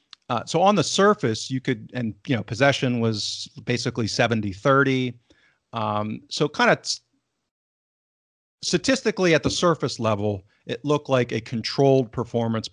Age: 40-59